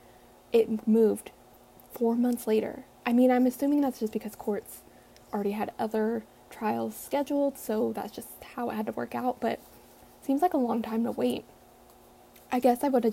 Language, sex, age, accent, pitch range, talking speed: English, female, 10-29, American, 225-280 Hz, 185 wpm